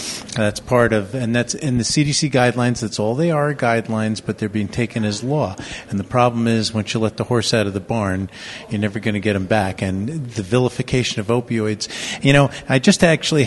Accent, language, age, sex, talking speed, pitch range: American, English, 40-59, male, 225 wpm, 110-145 Hz